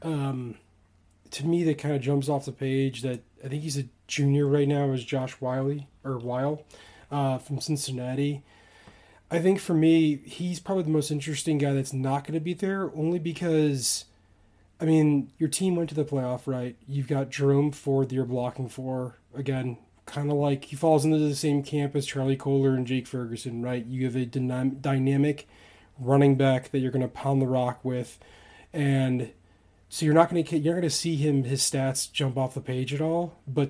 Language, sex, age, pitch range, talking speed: English, male, 20-39, 125-145 Hz, 200 wpm